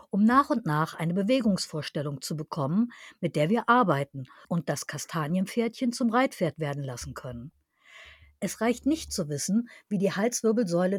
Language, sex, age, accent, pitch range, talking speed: German, female, 50-69, German, 165-240 Hz, 155 wpm